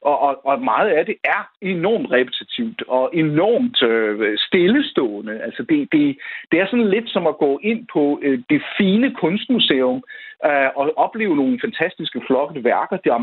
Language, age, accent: Danish, 60-79, native